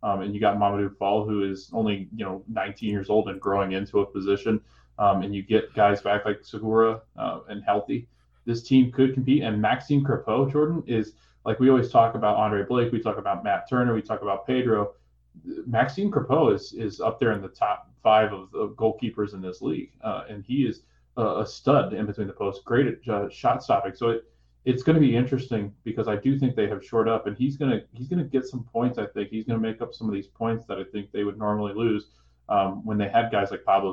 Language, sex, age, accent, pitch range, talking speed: English, male, 20-39, American, 100-115 Hz, 240 wpm